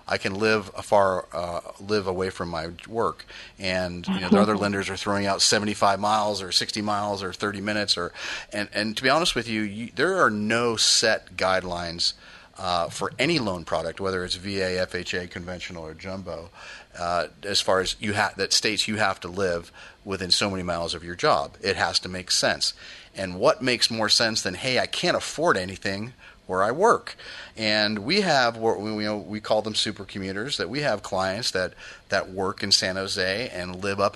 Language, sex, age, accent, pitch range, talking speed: English, male, 30-49, American, 90-110 Hz, 200 wpm